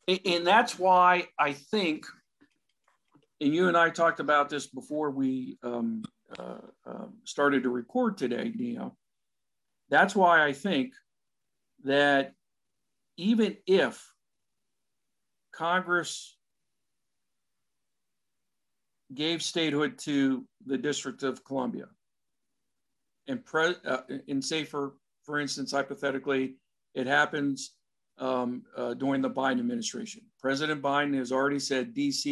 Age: 50-69